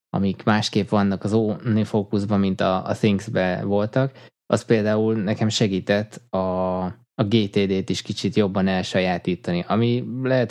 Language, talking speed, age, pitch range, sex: Hungarian, 145 wpm, 20-39, 95-110 Hz, male